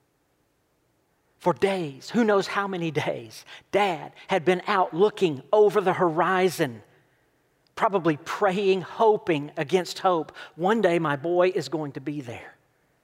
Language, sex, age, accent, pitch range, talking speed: English, male, 40-59, American, 160-215 Hz, 135 wpm